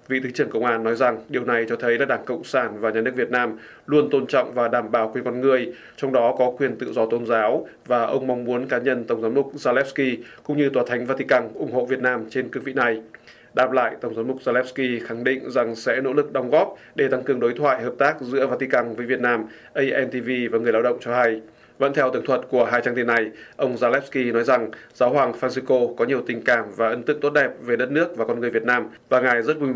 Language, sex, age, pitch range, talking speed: Vietnamese, male, 20-39, 120-130 Hz, 265 wpm